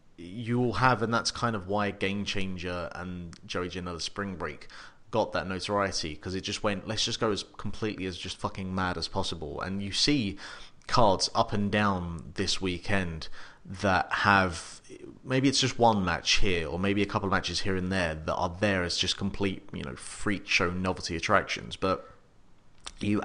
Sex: male